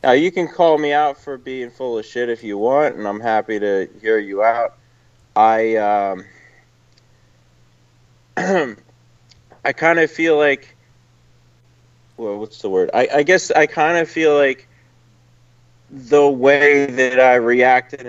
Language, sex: English, male